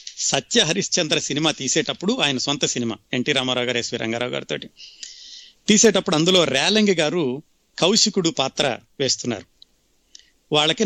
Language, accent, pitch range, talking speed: Telugu, native, 135-180 Hz, 115 wpm